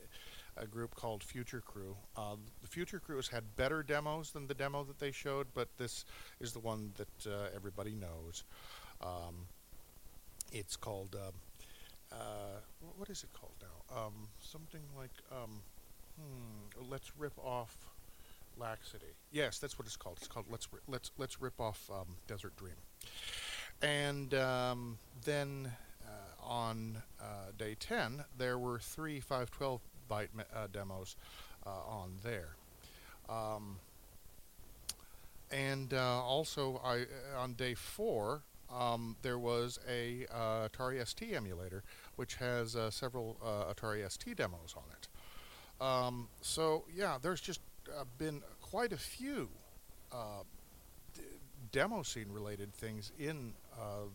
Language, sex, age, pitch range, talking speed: English, male, 50-69, 100-130 Hz, 140 wpm